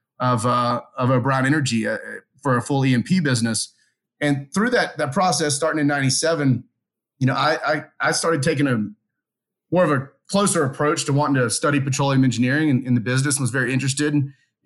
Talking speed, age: 190 wpm, 30-49